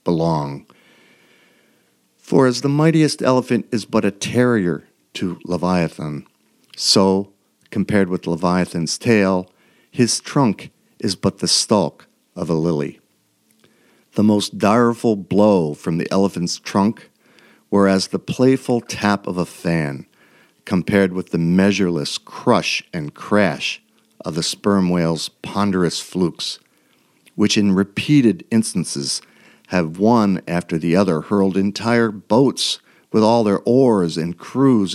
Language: English